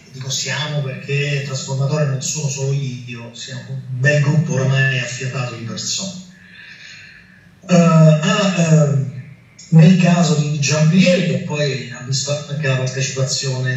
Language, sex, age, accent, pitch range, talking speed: Italian, male, 30-49, native, 135-160 Hz, 125 wpm